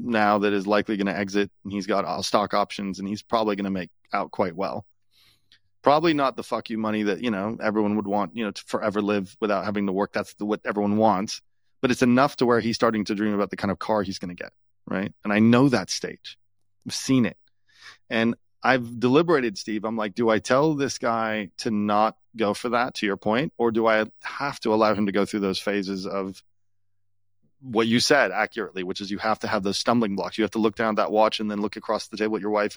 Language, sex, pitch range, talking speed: English, male, 100-115 Hz, 250 wpm